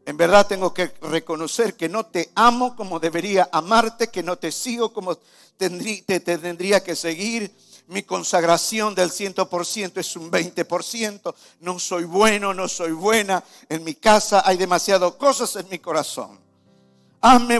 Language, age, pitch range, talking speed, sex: Spanish, 50-69, 125-185 Hz, 150 wpm, male